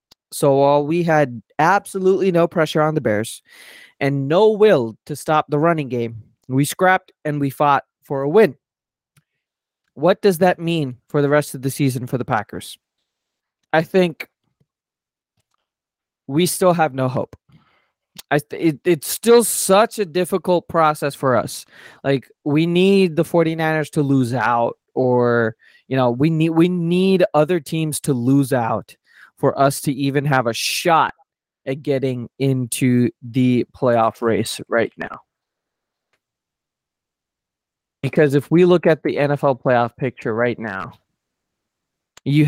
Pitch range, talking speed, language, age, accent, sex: 125-160 Hz, 145 wpm, English, 20-39, American, male